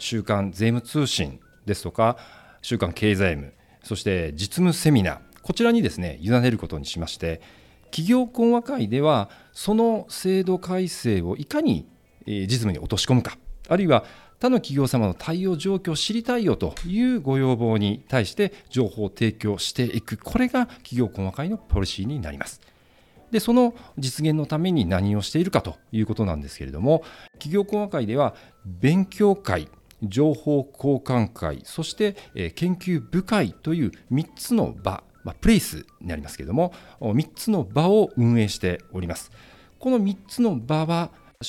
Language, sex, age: Japanese, male, 40-59